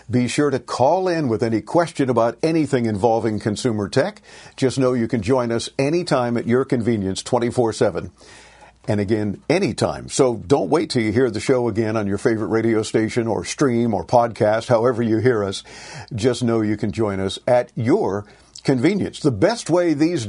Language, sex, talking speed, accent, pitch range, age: English, male, 185 wpm, American, 115-140 Hz, 50-69